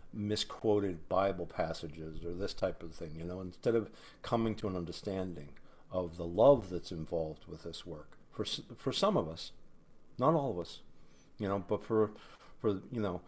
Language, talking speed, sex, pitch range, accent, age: English, 180 wpm, male, 85-105 Hz, American, 50-69